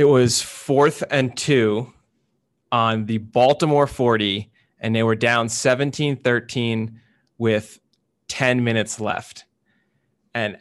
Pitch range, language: 115-130 Hz, English